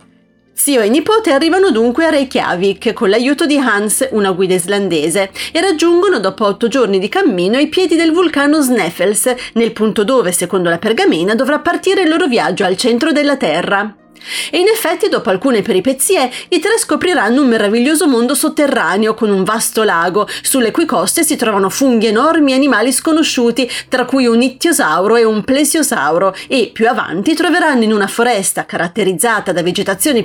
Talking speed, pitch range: 170 wpm, 205-295 Hz